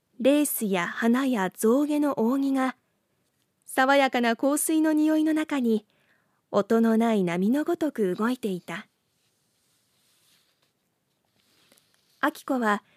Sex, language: female, Japanese